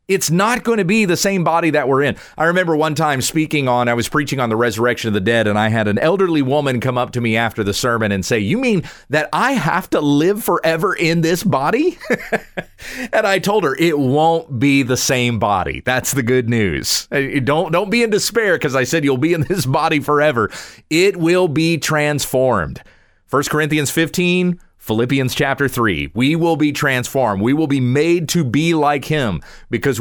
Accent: American